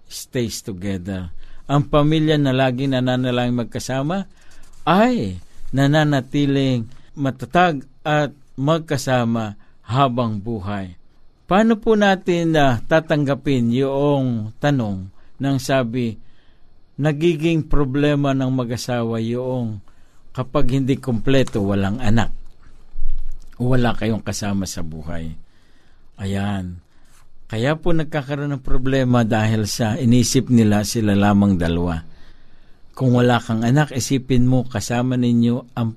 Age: 50-69